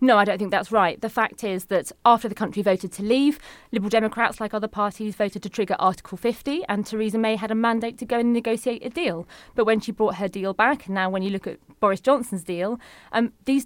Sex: female